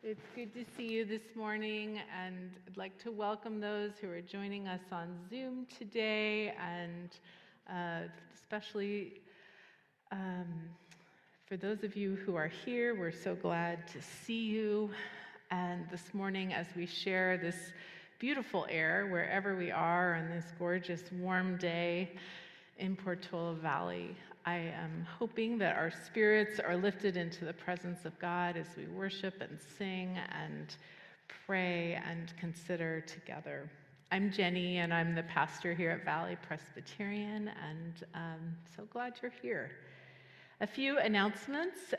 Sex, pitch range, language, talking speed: female, 175-210 Hz, English, 140 wpm